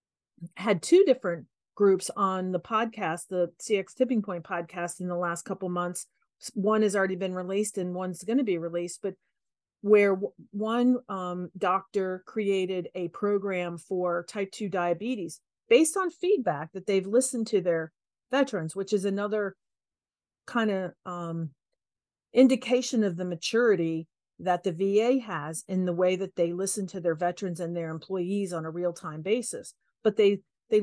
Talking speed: 160 wpm